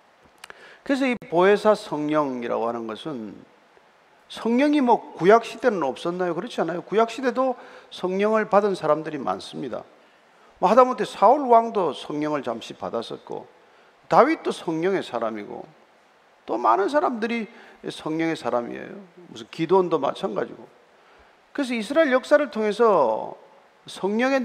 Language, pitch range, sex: Korean, 170-255 Hz, male